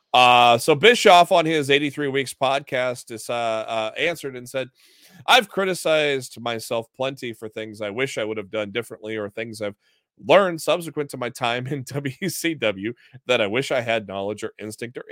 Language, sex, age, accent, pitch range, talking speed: English, male, 30-49, American, 110-140 Hz, 185 wpm